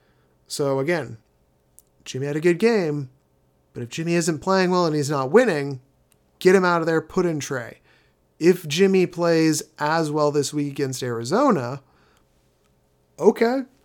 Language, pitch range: English, 135-185 Hz